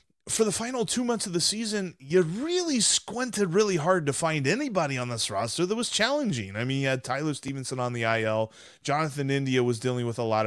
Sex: male